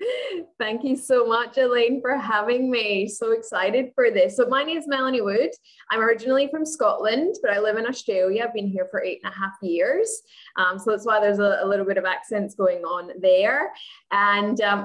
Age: 10-29